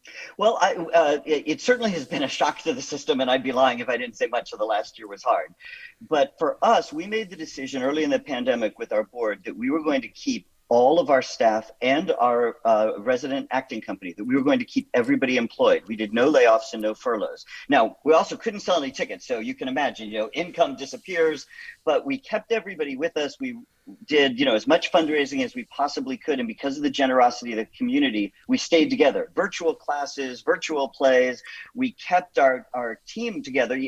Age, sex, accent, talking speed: 50-69, male, American, 220 wpm